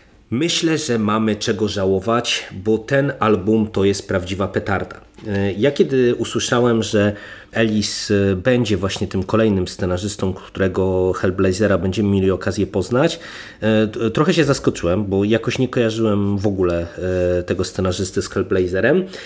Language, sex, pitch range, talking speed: Polish, male, 95-115 Hz, 130 wpm